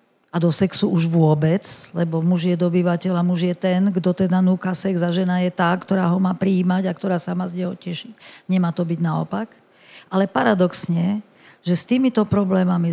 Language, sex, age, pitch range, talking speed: Slovak, female, 50-69, 175-205 Hz, 190 wpm